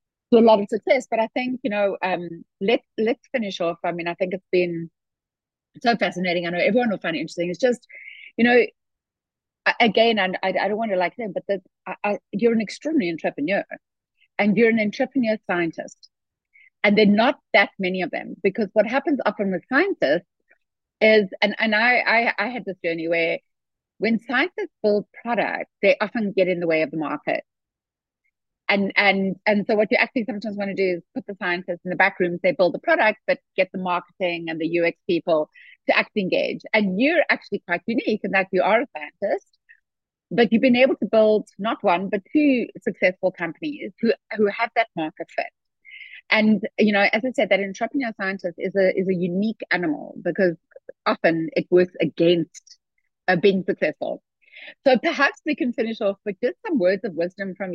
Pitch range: 185-245 Hz